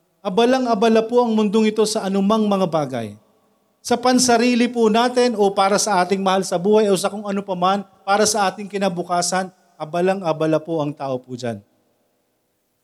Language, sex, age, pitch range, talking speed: Filipino, male, 40-59, 140-190 Hz, 165 wpm